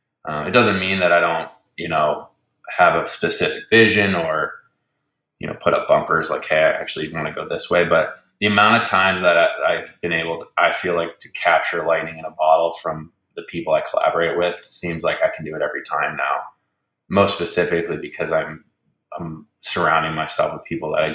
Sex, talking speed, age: male, 205 wpm, 20-39